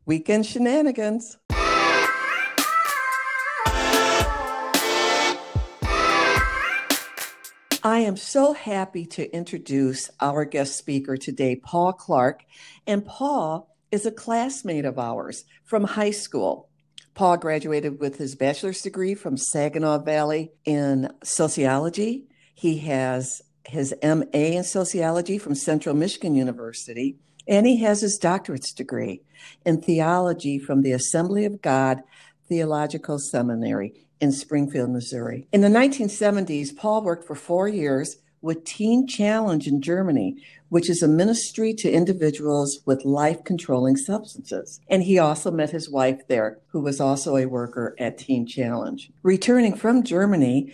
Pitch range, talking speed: 140-190 Hz, 120 wpm